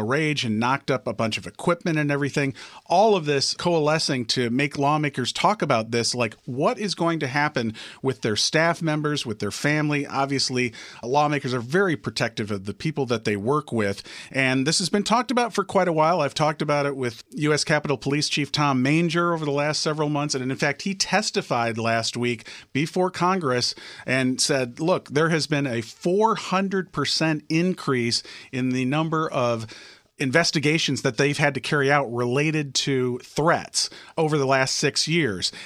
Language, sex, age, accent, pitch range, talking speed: English, male, 40-59, American, 125-160 Hz, 180 wpm